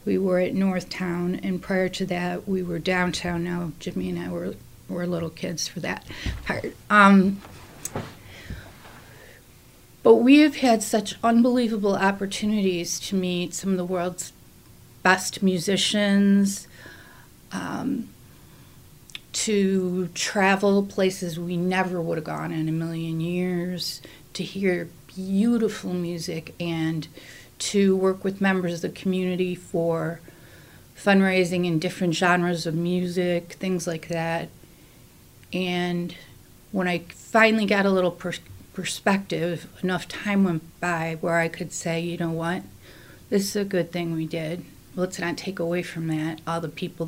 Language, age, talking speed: English, 40-59, 140 wpm